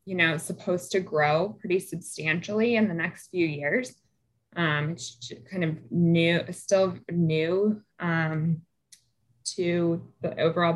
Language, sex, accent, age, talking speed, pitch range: English, female, American, 20-39, 135 wpm, 150-180 Hz